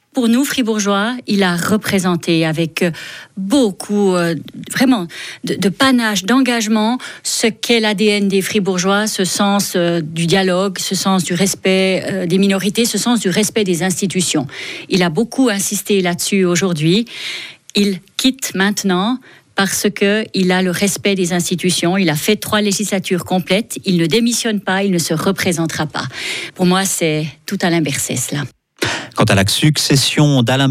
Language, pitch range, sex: French, 130-195 Hz, female